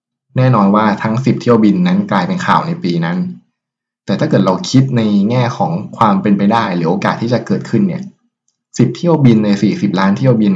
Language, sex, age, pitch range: Thai, male, 20-39, 105-165 Hz